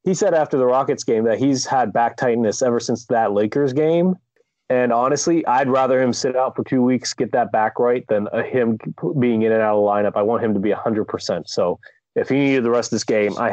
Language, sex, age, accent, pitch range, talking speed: English, male, 30-49, American, 110-135 Hz, 255 wpm